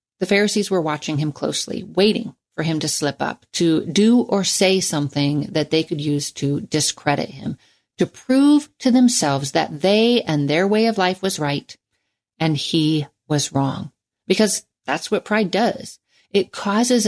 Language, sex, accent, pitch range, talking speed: English, female, American, 150-210 Hz, 170 wpm